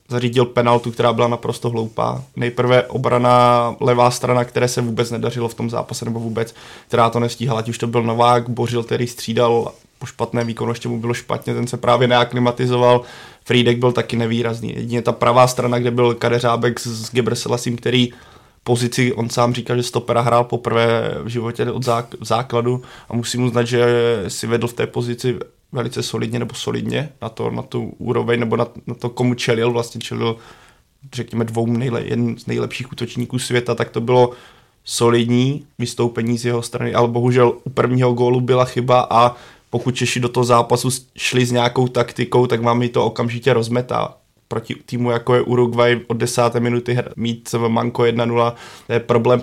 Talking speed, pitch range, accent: 180 wpm, 115-125 Hz, native